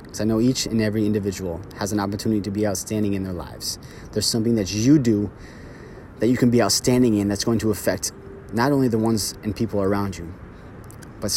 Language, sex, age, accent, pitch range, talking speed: English, male, 20-39, American, 95-115 Hz, 205 wpm